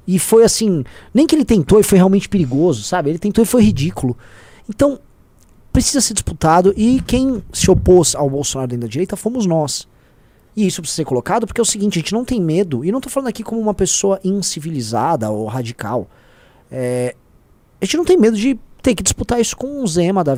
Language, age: Portuguese, 20-39